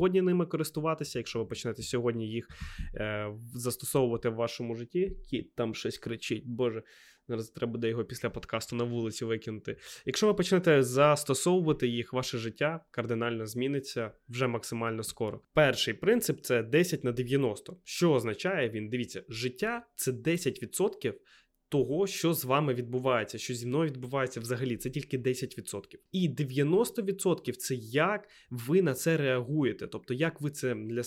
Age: 20-39